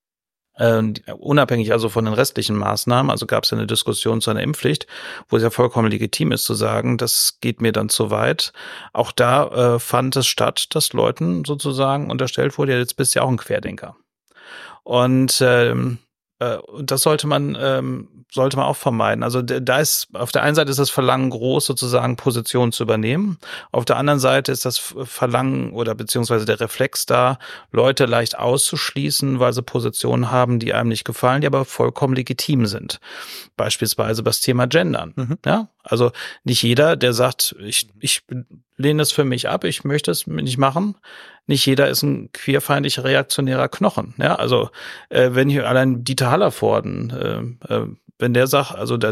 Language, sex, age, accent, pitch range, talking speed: German, male, 30-49, German, 115-140 Hz, 175 wpm